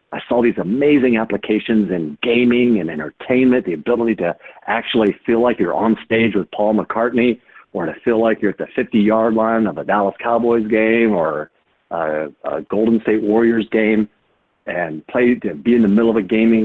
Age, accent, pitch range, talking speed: 50-69, American, 95-115 Hz, 185 wpm